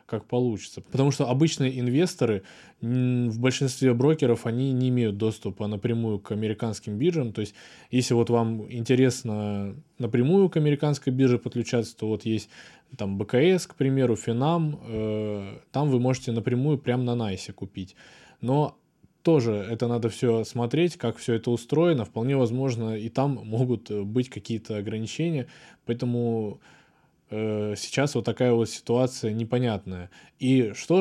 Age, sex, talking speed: 20-39, male, 135 wpm